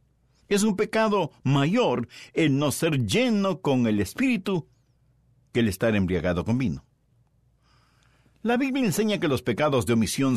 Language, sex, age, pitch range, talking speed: Spanish, male, 60-79, 125-185 Hz, 145 wpm